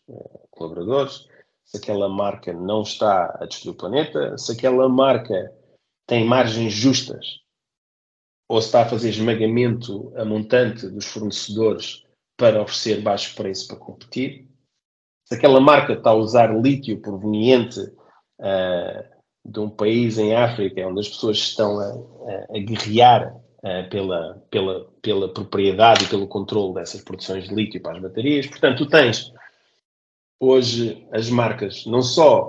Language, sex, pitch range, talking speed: Portuguese, male, 100-120 Hz, 140 wpm